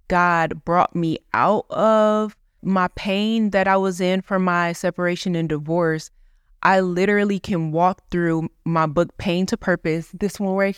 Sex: female